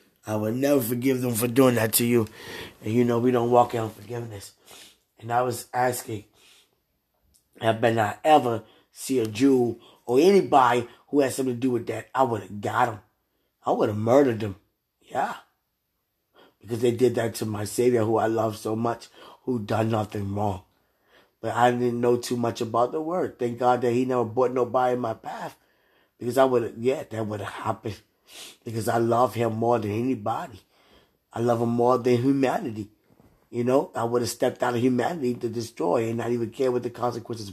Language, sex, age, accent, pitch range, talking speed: English, male, 20-39, American, 110-125 Hz, 195 wpm